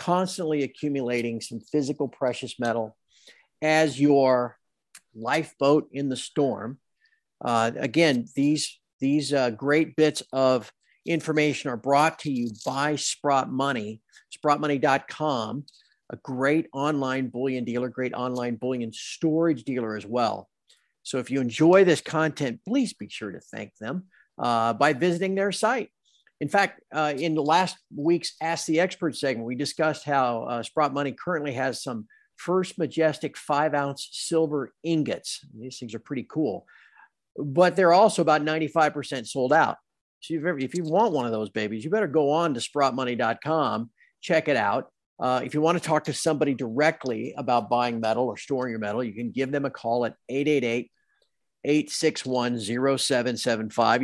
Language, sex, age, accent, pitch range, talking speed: English, male, 50-69, American, 125-155 Hz, 150 wpm